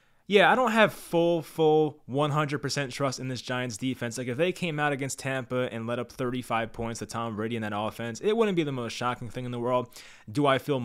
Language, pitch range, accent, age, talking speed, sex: English, 110-135 Hz, American, 20-39, 240 wpm, male